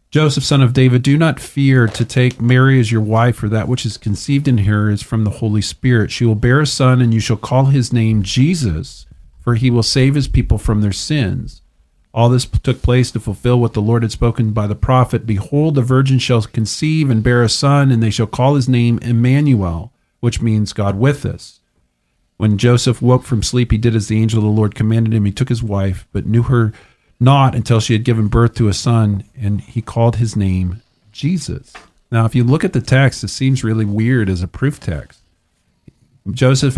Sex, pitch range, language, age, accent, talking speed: male, 105-130 Hz, English, 40-59, American, 220 wpm